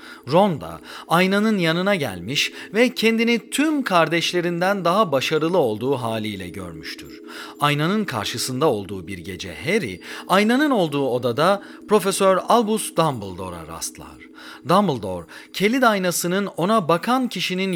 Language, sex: Turkish, male